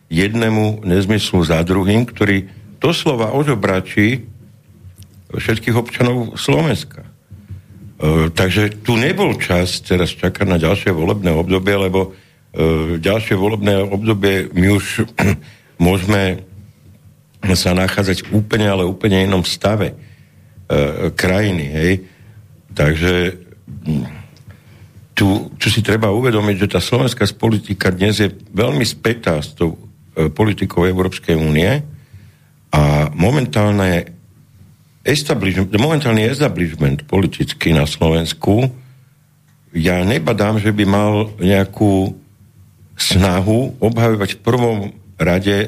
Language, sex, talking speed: Slovak, male, 100 wpm